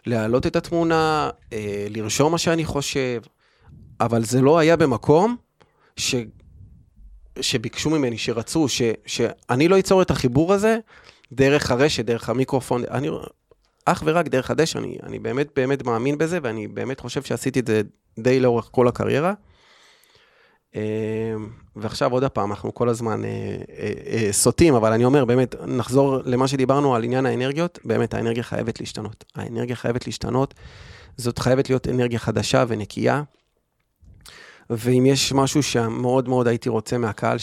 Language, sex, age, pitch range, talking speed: Hebrew, male, 30-49, 110-140 Hz, 145 wpm